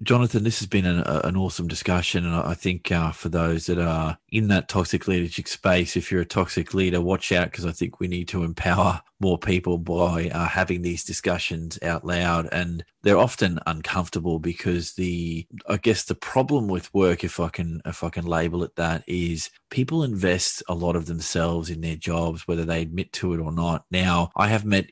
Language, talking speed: English, 200 wpm